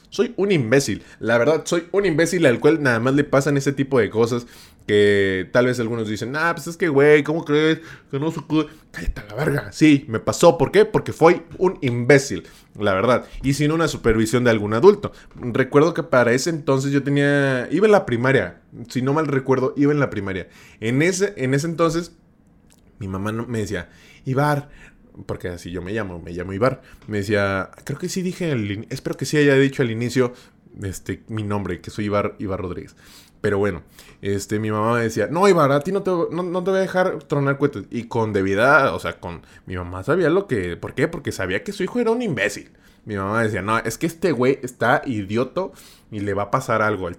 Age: 20-39